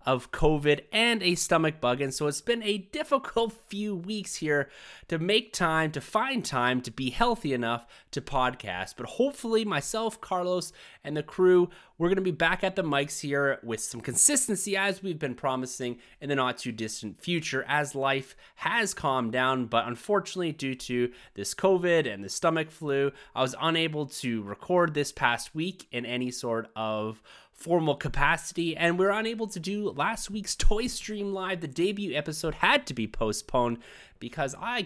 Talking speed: 180 wpm